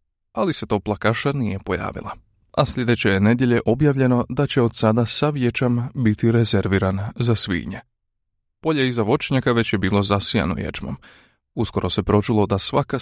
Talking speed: 155 wpm